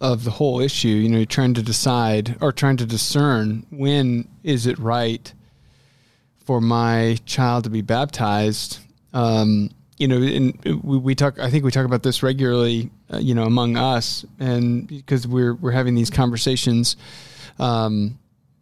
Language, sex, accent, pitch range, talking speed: English, male, American, 120-140 Hz, 165 wpm